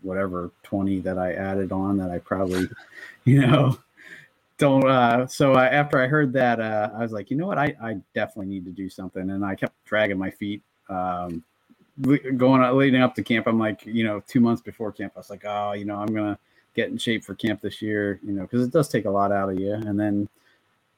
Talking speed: 235 wpm